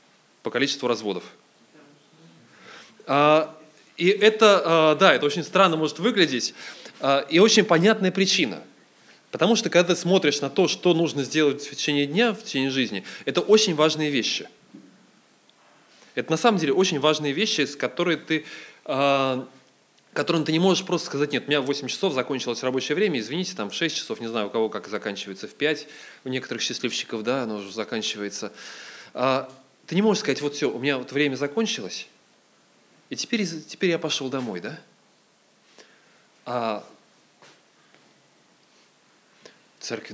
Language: Russian